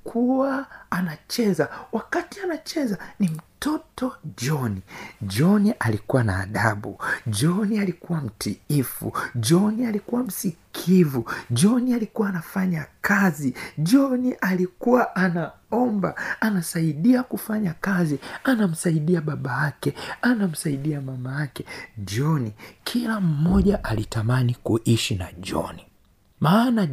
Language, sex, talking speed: Swahili, male, 90 wpm